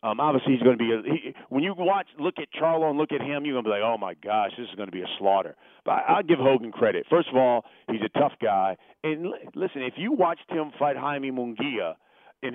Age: 40-59